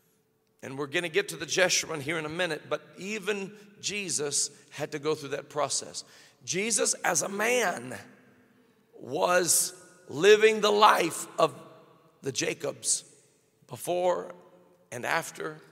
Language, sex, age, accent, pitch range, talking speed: English, male, 50-69, American, 145-185 Hz, 135 wpm